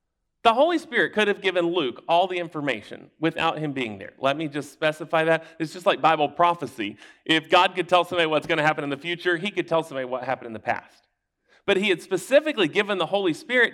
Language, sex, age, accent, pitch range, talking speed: English, male, 40-59, American, 155-220 Hz, 230 wpm